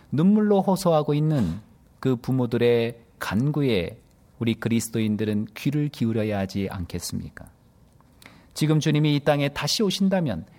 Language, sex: Korean, male